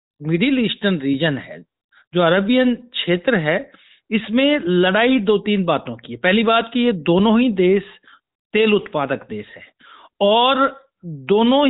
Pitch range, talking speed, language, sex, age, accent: 175-235 Hz, 145 wpm, Hindi, male, 60-79, native